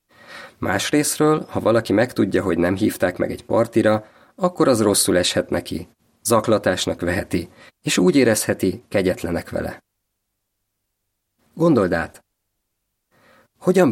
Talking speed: 105 wpm